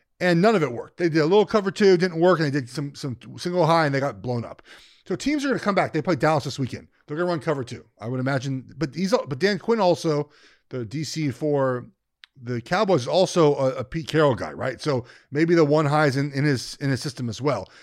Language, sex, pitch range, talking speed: English, male, 140-190 Hz, 265 wpm